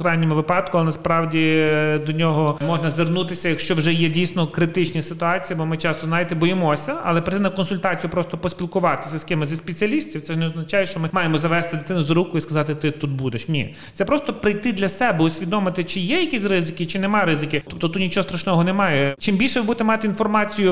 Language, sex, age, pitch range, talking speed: Ukrainian, male, 30-49, 155-190 Hz, 200 wpm